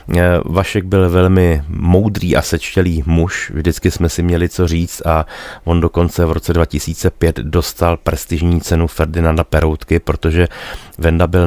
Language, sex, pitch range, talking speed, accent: Czech, male, 80-95 Hz, 140 wpm, native